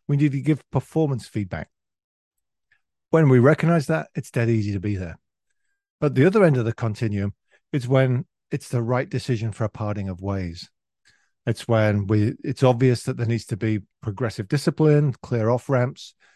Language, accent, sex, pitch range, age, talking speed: English, British, male, 105-130 Hz, 50-69, 180 wpm